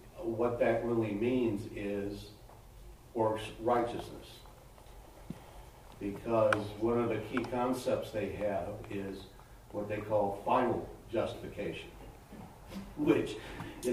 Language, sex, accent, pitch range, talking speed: English, male, American, 105-120 Hz, 100 wpm